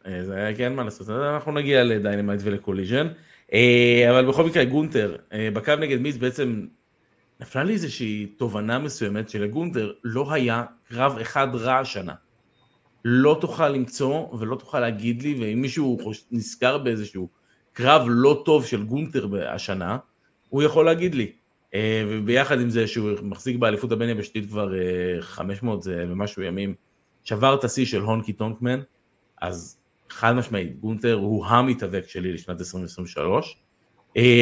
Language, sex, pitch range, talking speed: Hebrew, male, 105-130 Hz, 135 wpm